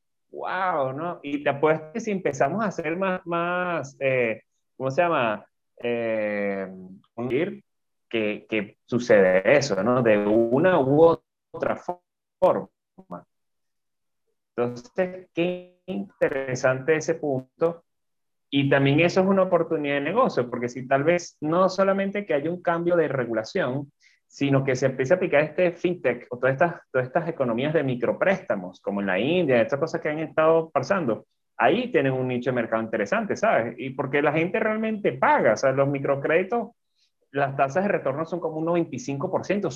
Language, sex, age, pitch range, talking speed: Spanish, male, 30-49, 130-175 Hz, 160 wpm